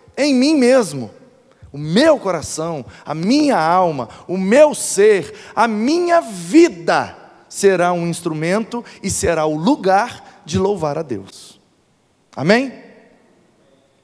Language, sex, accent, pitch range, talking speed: Portuguese, male, Brazilian, 160-245 Hz, 115 wpm